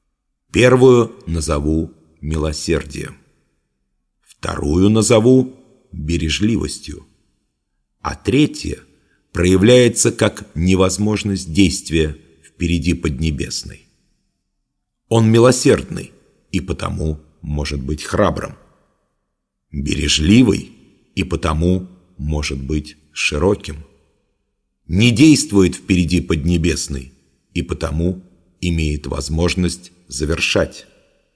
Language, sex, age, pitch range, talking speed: English, male, 50-69, 75-100 Hz, 70 wpm